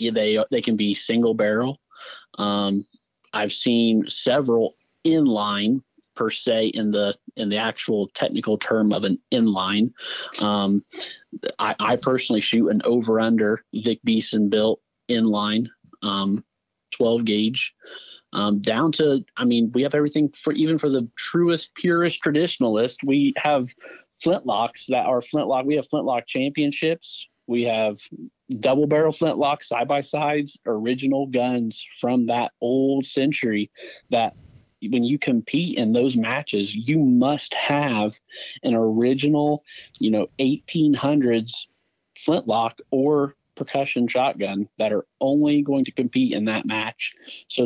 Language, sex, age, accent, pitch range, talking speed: English, male, 30-49, American, 110-145 Hz, 135 wpm